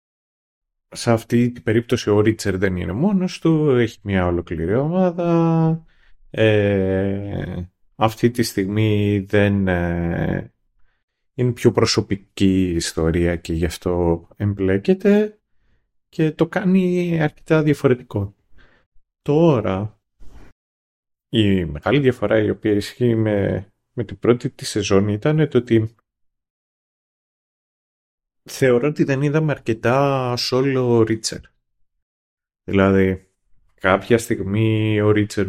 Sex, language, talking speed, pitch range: male, Greek, 105 wpm, 95-130 Hz